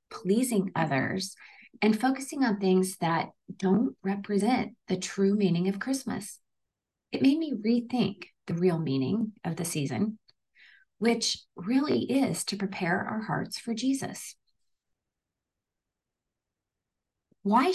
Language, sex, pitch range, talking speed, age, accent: English, female, 175-230 Hz, 115 wpm, 30-49, American